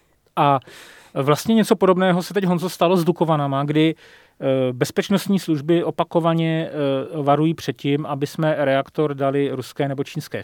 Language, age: Czech, 40-59